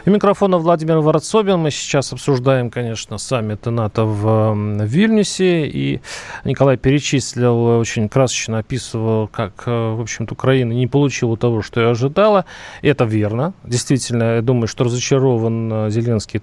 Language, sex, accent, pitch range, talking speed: Russian, male, native, 125-165 Hz, 135 wpm